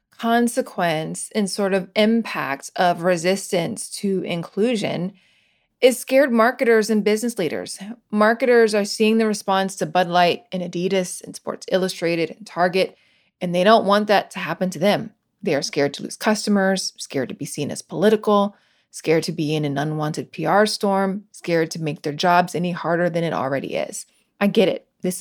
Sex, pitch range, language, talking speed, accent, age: female, 170-205 Hz, English, 175 wpm, American, 20-39